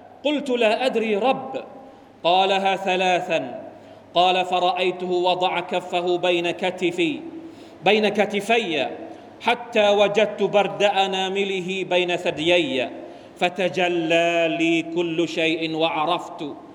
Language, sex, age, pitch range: Thai, male, 40-59, 180-245 Hz